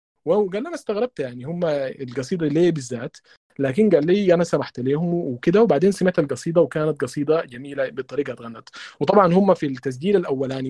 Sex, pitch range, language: male, 130-170 Hz, Arabic